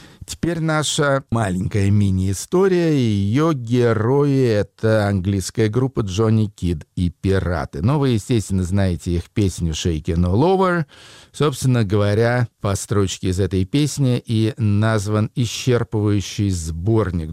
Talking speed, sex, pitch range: 120 wpm, male, 95-125 Hz